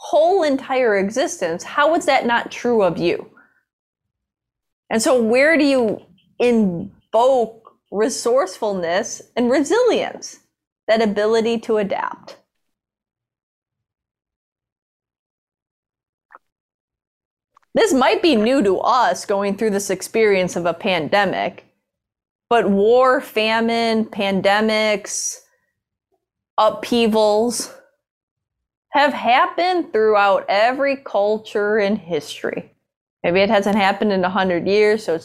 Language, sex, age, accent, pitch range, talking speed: English, female, 20-39, American, 190-240 Hz, 100 wpm